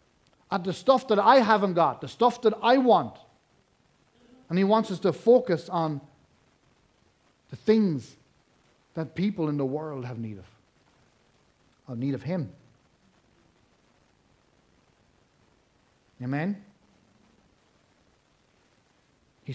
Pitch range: 155-215 Hz